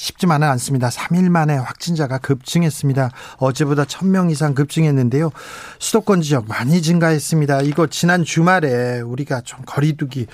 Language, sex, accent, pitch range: Korean, male, native, 135-165 Hz